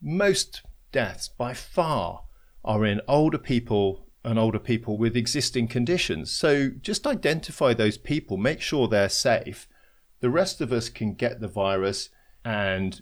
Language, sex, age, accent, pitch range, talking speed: English, male, 40-59, British, 105-135 Hz, 145 wpm